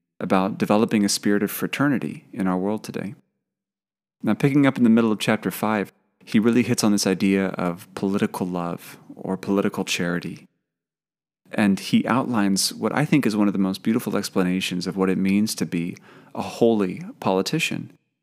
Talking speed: 175 wpm